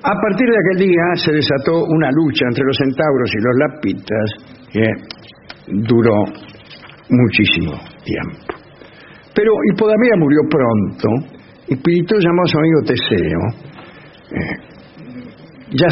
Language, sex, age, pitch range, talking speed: English, male, 60-79, 130-190 Hz, 115 wpm